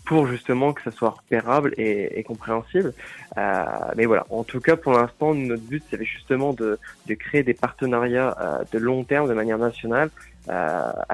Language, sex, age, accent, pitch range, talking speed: French, male, 20-39, French, 115-130 Hz, 185 wpm